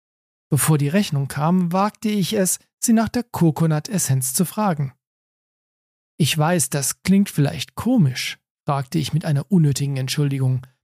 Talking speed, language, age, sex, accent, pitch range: 140 wpm, German, 40-59, male, German, 140-195 Hz